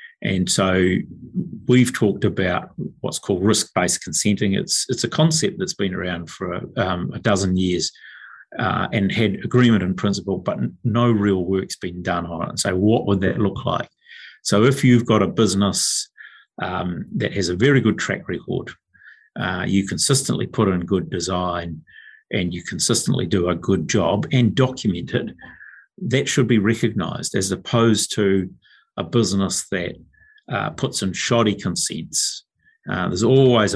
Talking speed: 165 wpm